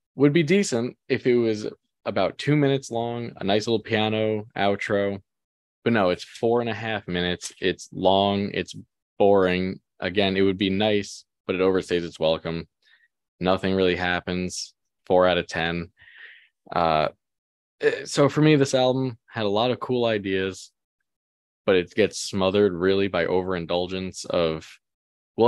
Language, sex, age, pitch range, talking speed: English, male, 20-39, 90-110 Hz, 155 wpm